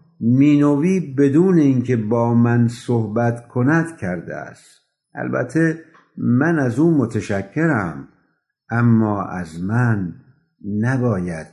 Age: 60-79